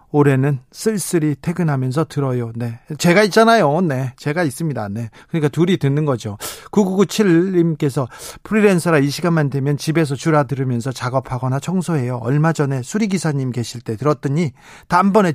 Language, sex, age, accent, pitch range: Korean, male, 40-59, native, 140-190 Hz